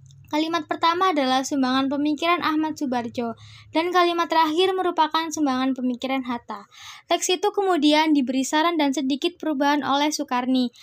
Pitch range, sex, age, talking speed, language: 265-320 Hz, female, 20-39, 135 wpm, Indonesian